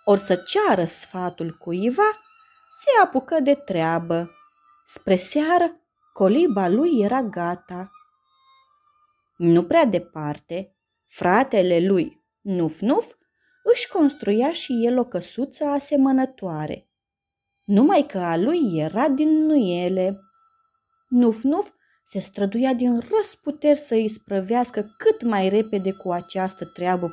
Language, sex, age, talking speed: Romanian, female, 20-39, 110 wpm